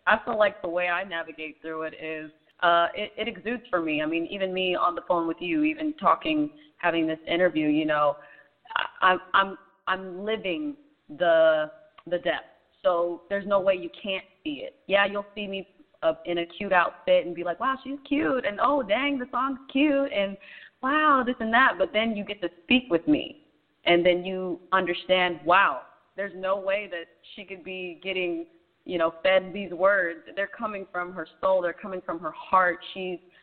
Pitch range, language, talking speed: 170-220 Hz, English, 200 wpm